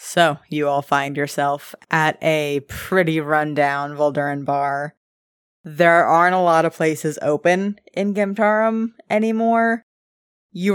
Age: 20-39